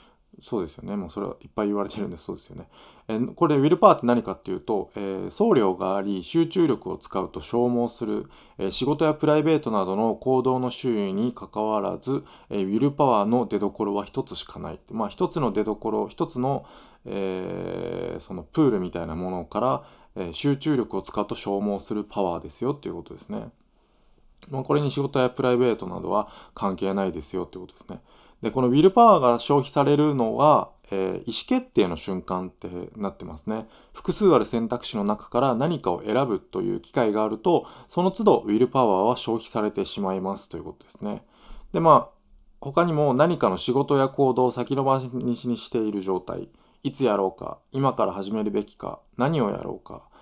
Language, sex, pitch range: Japanese, male, 100-135 Hz